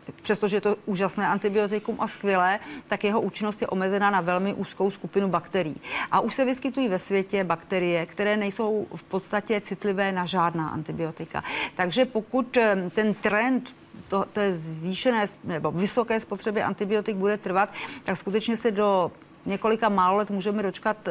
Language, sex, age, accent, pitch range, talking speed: Czech, female, 40-59, native, 175-210 Hz, 150 wpm